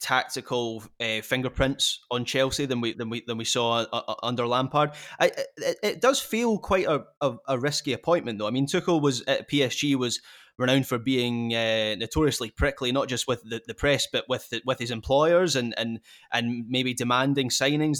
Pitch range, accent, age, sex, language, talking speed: 115-145 Hz, British, 20-39, male, English, 195 wpm